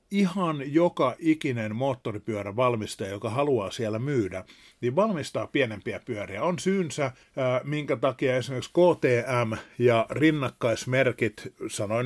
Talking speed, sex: 105 wpm, male